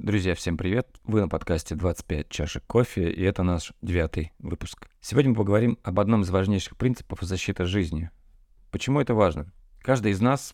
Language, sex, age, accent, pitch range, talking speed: Russian, male, 20-39, native, 90-115 Hz, 170 wpm